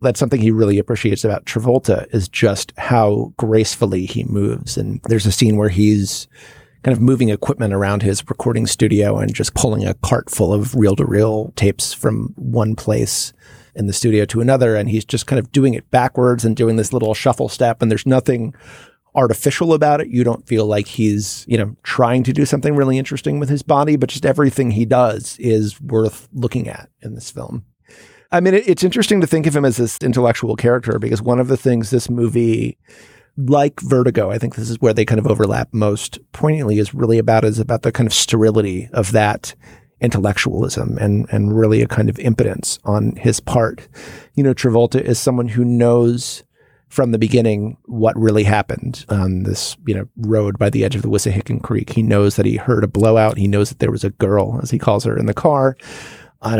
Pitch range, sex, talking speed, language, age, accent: 110-130 Hz, male, 205 wpm, English, 30-49, American